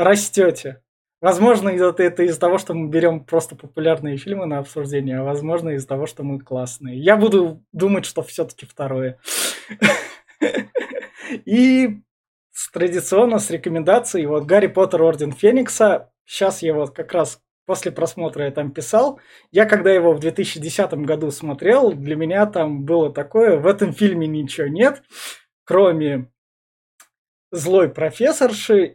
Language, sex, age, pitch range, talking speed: Russian, male, 20-39, 145-195 Hz, 135 wpm